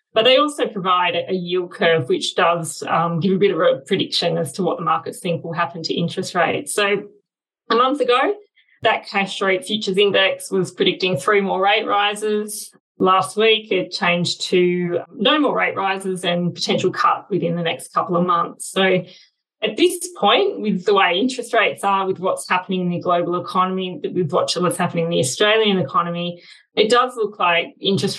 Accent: Australian